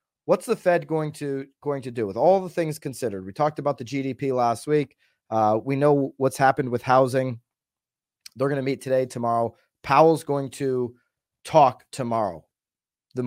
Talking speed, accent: 175 wpm, American